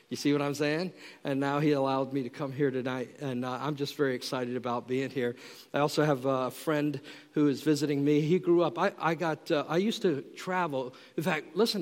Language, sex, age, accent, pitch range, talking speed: English, male, 50-69, American, 145-175 Hz, 235 wpm